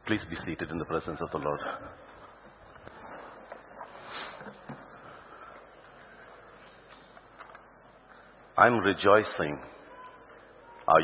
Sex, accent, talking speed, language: male, Indian, 65 wpm, English